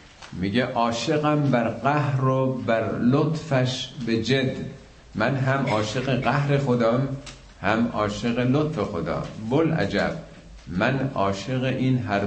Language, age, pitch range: Persian, 50-69, 105-130 Hz